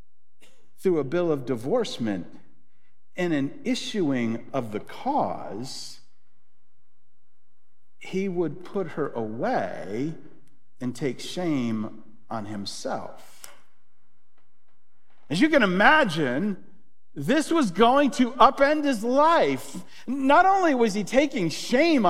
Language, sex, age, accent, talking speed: English, male, 50-69, American, 105 wpm